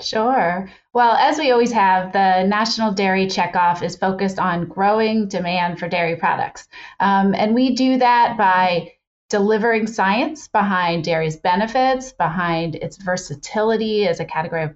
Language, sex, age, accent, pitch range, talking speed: English, female, 30-49, American, 180-215 Hz, 145 wpm